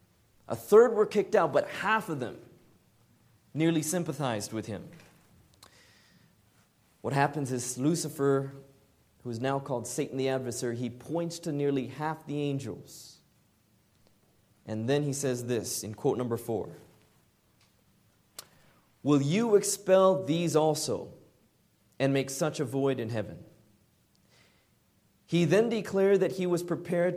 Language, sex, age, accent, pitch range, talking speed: English, male, 30-49, American, 120-160 Hz, 130 wpm